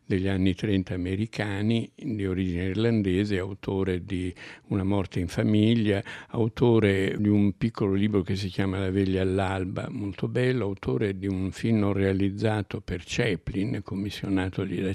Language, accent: Italian, native